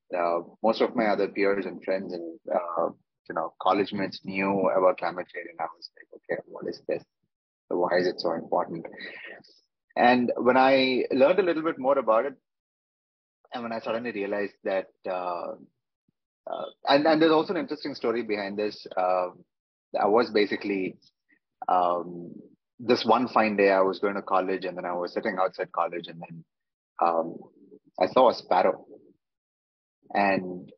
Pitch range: 85-105 Hz